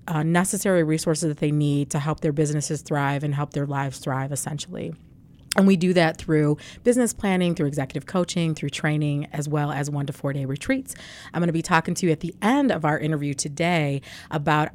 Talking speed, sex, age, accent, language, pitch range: 210 wpm, female, 30-49, American, English, 150-180 Hz